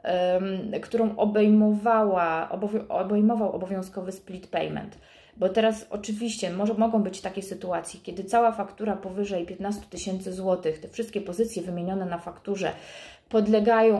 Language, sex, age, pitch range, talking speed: Polish, female, 30-49, 180-215 Hz, 110 wpm